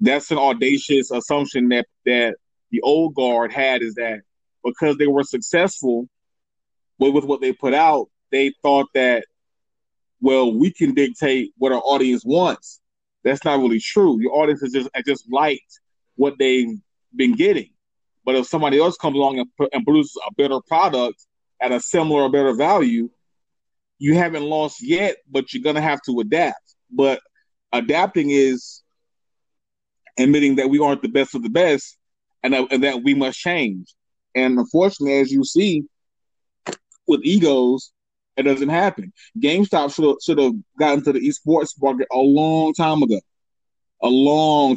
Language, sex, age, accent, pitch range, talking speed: English, male, 30-49, American, 125-150 Hz, 160 wpm